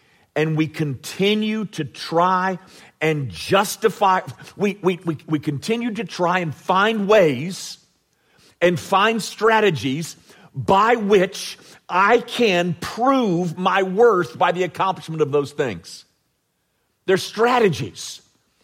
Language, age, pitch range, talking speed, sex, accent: English, 50-69, 165-230 Hz, 105 wpm, male, American